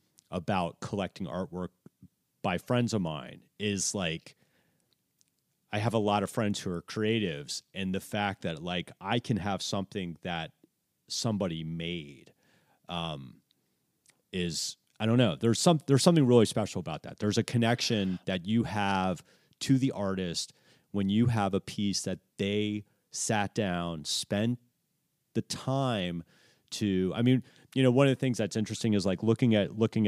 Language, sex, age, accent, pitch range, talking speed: English, male, 30-49, American, 95-120 Hz, 160 wpm